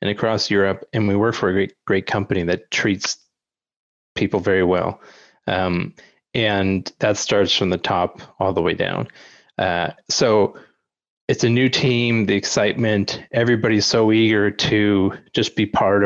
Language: English